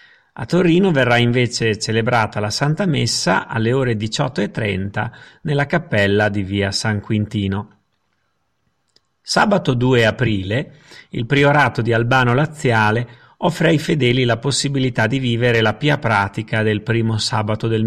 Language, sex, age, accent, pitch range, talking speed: Italian, male, 40-59, native, 110-145 Hz, 130 wpm